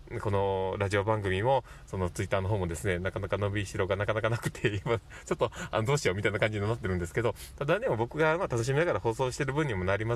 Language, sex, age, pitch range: Japanese, male, 20-39, 95-120 Hz